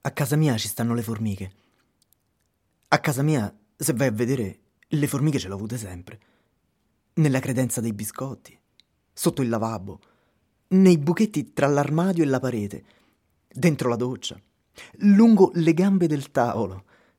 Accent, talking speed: native, 145 wpm